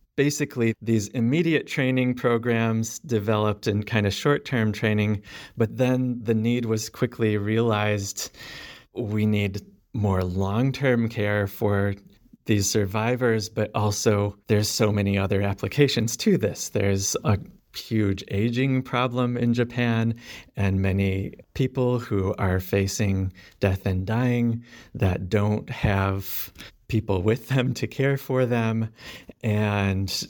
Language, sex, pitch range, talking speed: English, male, 100-120 Hz, 125 wpm